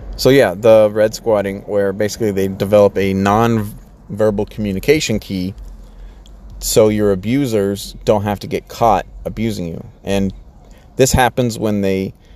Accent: American